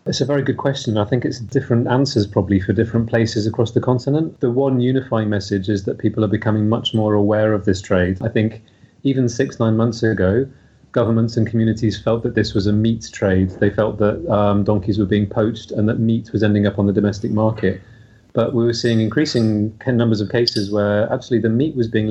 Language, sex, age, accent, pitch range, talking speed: English, male, 30-49, British, 105-115 Hz, 220 wpm